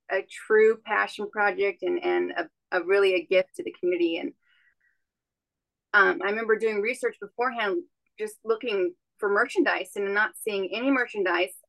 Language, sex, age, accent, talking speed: English, female, 30-49, American, 155 wpm